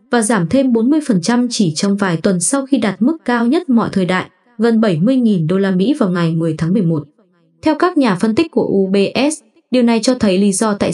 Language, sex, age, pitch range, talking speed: Vietnamese, female, 20-39, 190-250 Hz, 225 wpm